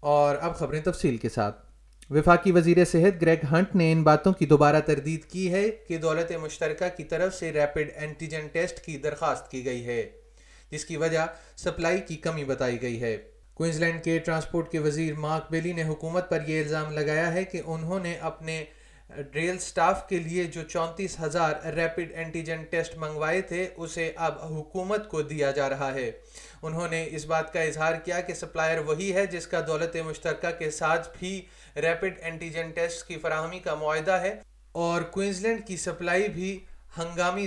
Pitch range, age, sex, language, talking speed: 155-175 Hz, 30-49, male, Urdu, 180 wpm